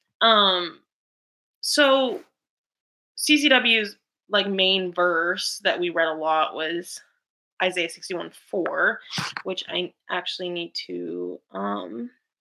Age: 20-39